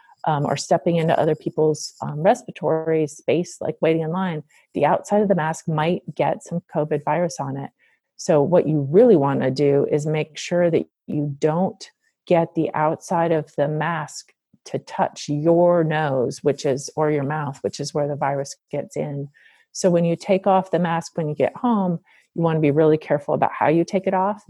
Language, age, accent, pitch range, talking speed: English, 40-59, American, 150-175 Hz, 205 wpm